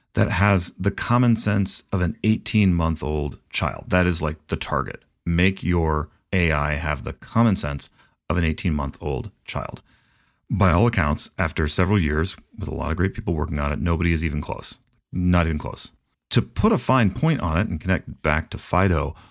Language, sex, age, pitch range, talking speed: English, male, 30-49, 75-100 Hz, 185 wpm